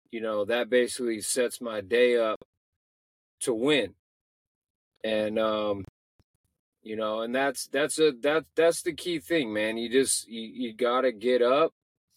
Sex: male